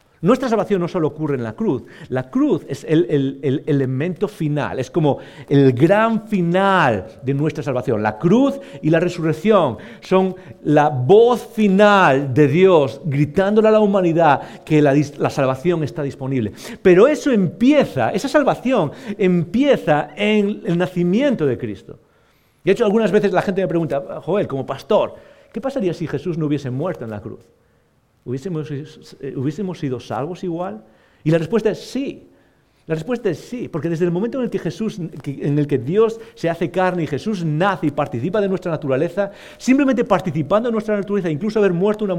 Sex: male